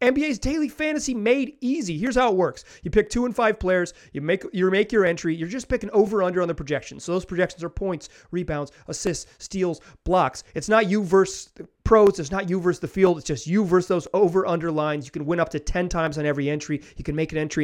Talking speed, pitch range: 240 wpm, 150-210 Hz